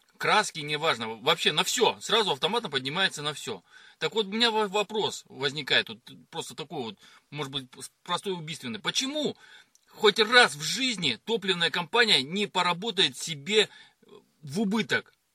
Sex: male